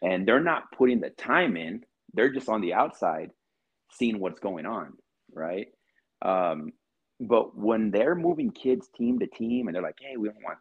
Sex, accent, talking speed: male, American, 185 wpm